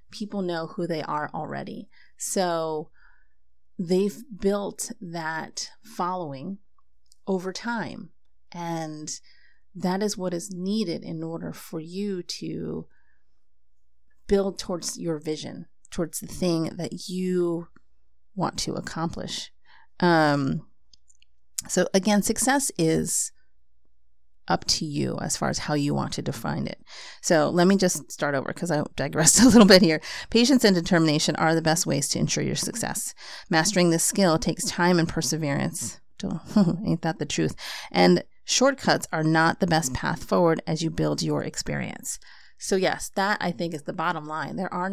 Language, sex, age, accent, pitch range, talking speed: English, female, 30-49, American, 155-190 Hz, 150 wpm